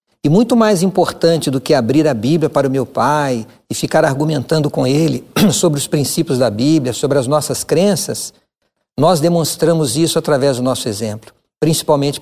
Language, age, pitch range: Portuguese, 50-69, 140-175 Hz